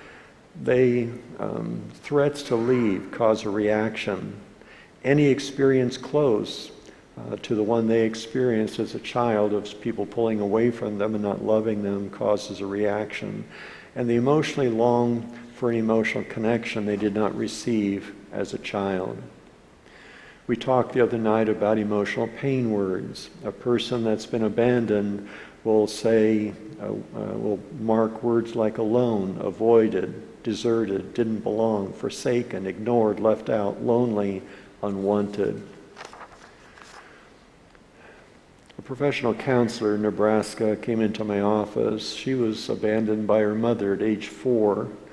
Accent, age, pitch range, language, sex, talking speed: American, 60-79, 105-120 Hz, English, male, 130 wpm